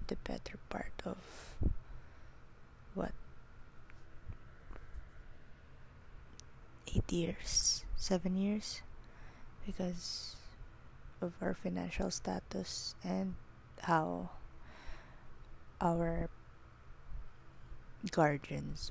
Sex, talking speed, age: female, 55 wpm, 20-39